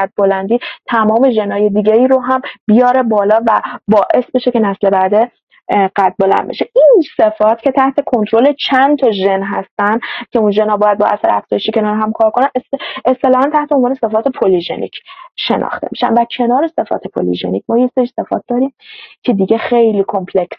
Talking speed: 170 wpm